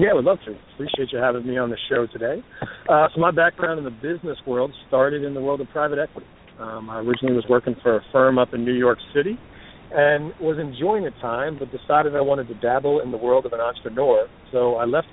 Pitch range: 120-145 Hz